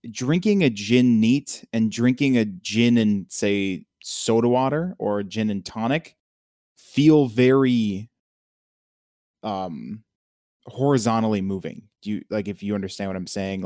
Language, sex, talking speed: English, male, 130 wpm